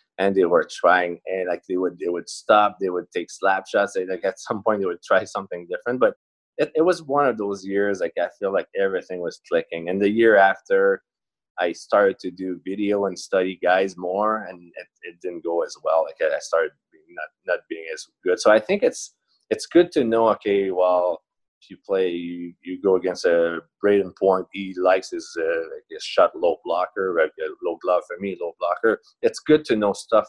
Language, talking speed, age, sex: English, 215 wpm, 20-39, male